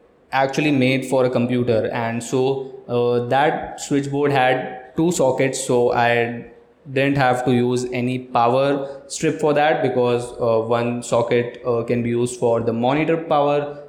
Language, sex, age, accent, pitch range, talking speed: Hindi, male, 20-39, native, 120-140 Hz, 155 wpm